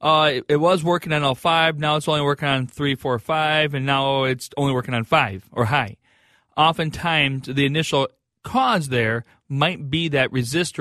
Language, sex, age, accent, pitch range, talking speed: English, male, 40-59, American, 125-150 Hz, 180 wpm